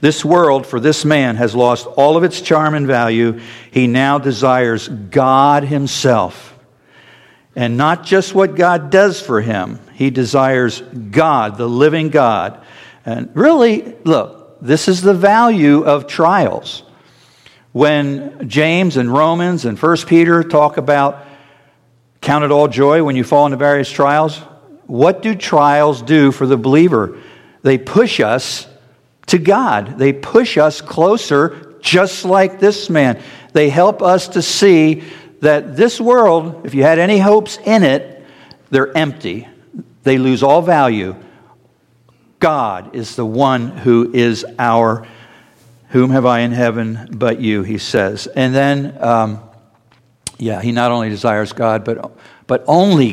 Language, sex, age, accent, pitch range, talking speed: English, male, 60-79, American, 120-155 Hz, 145 wpm